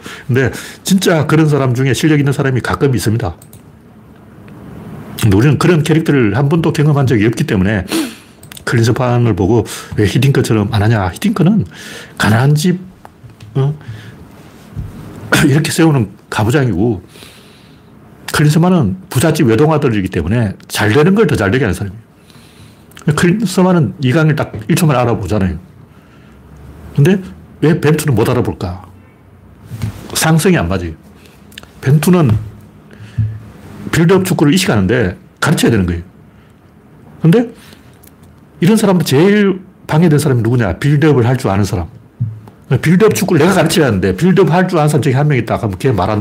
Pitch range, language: 105-160 Hz, Korean